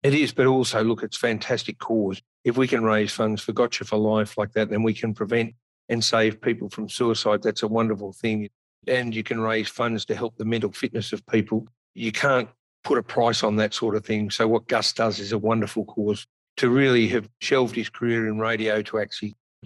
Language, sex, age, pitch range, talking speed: English, male, 50-69, 110-125 Hz, 220 wpm